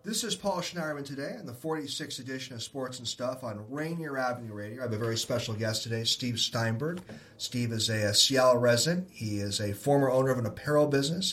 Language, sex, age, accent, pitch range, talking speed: English, male, 40-59, American, 110-135 Hz, 215 wpm